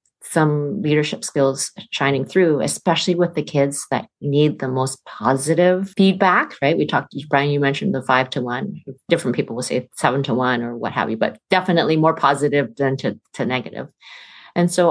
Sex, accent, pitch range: female, American, 145-180 Hz